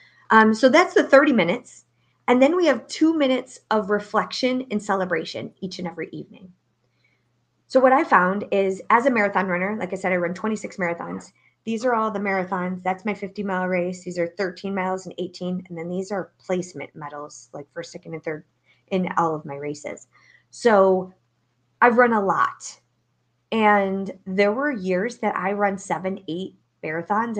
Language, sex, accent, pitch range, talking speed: English, female, American, 170-210 Hz, 180 wpm